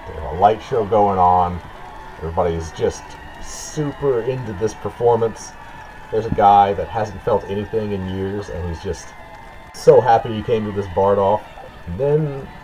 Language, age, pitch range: English, 30-49, 80-100 Hz